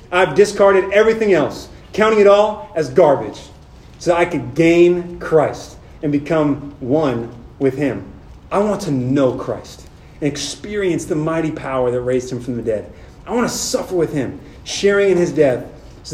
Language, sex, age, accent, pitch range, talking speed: English, male, 30-49, American, 160-255 Hz, 175 wpm